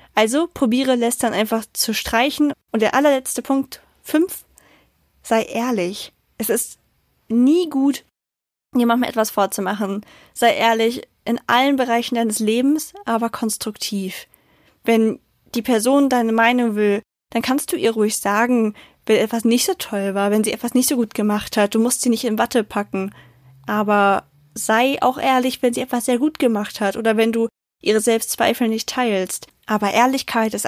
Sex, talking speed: female, 165 wpm